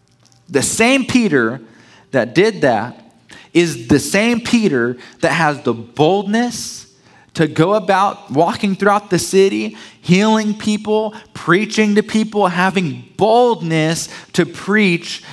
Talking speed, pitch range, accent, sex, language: 115 wpm, 155-210 Hz, American, male, English